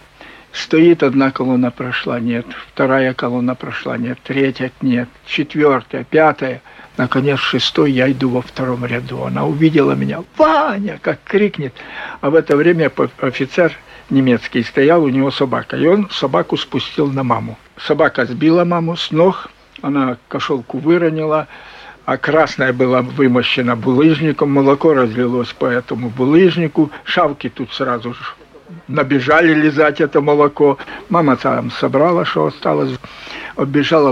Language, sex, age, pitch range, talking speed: Russian, male, 60-79, 130-155 Hz, 130 wpm